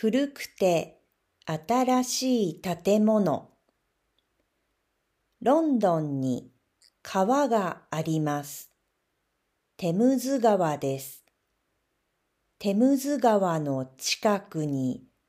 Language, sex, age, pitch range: Japanese, female, 50-69, 155-240 Hz